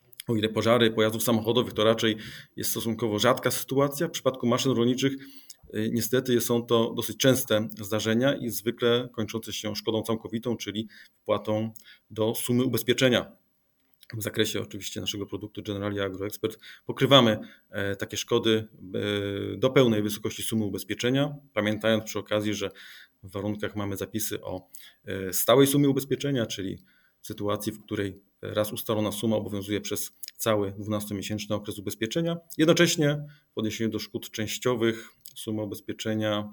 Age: 30-49